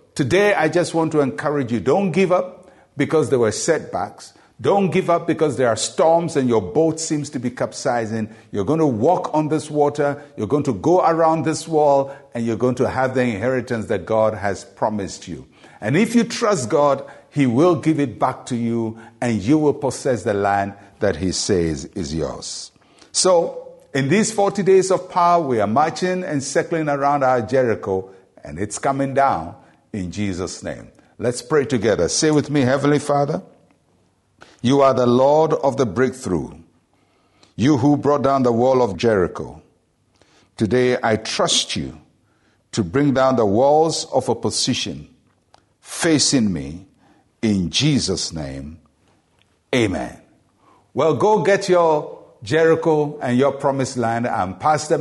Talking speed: 165 wpm